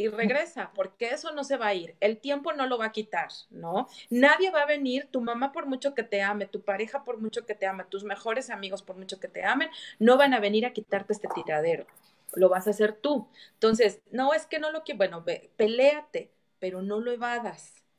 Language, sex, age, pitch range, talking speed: Spanish, female, 30-49, 210-270 Hz, 235 wpm